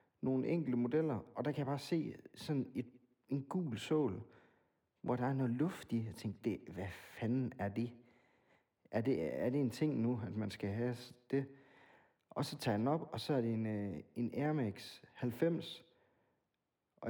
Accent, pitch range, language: native, 115-145 Hz, Danish